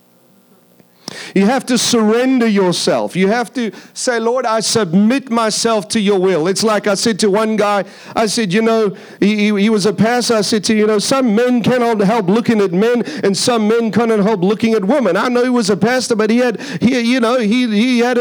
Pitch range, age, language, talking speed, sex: 205-245 Hz, 40-59, English, 220 wpm, male